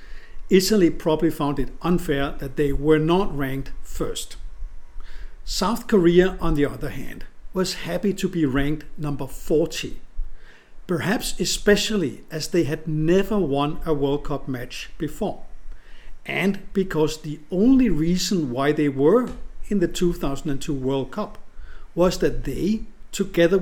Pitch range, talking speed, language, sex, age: 140-185 Hz, 135 wpm, English, male, 50-69